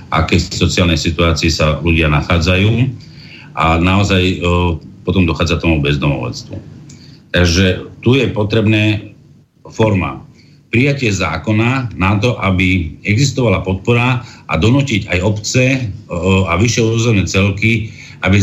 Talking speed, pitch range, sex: 115 wpm, 95-115 Hz, male